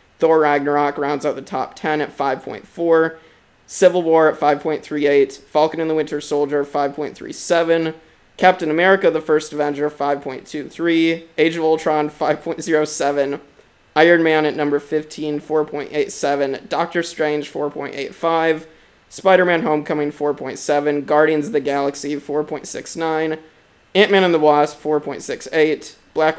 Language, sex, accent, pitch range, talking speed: English, male, American, 145-160 Hz, 120 wpm